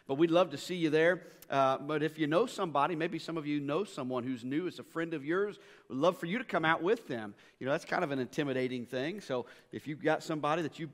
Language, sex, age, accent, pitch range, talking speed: English, male, 40-59, American, 145-185 Hz, 275 wpm